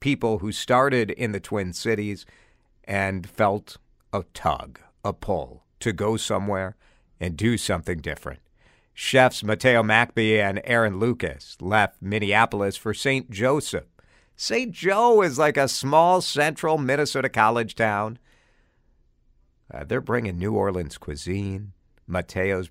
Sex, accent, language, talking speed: male, American, English, 125 wpm